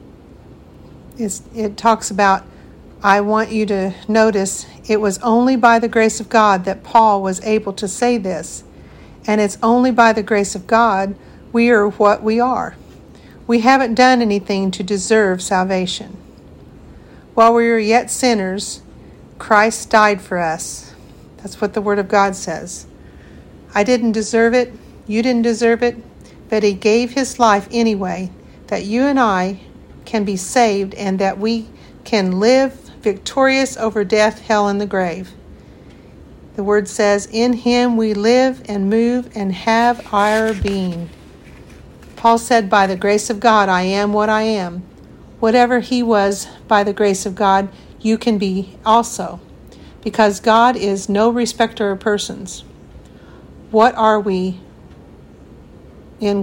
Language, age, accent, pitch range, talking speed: English, 50-69, American, 195-230 Hz, 150 wpm